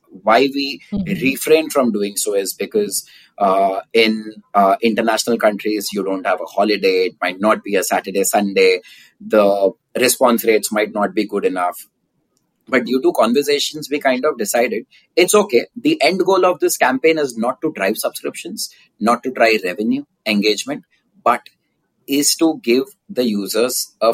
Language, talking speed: English, 165 wpm